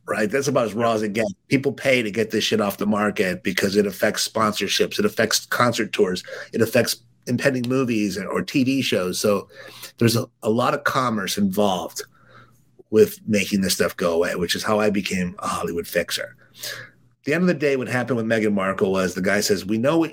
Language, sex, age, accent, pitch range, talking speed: English, male, 50-69, American, 110-140 Hz, 215 wpm